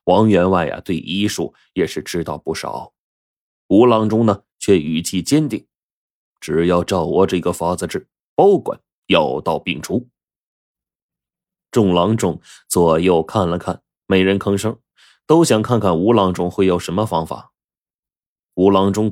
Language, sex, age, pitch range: Chinese, male, 20-39, 85-110 Hz